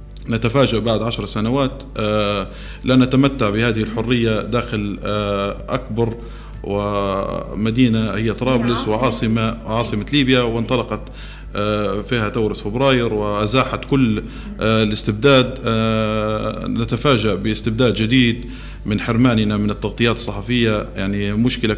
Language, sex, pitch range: Arabic, male, 105-125 Hz